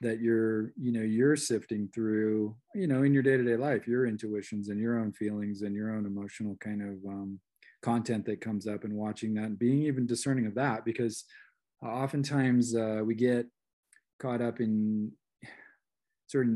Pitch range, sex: 105-120 Hz, male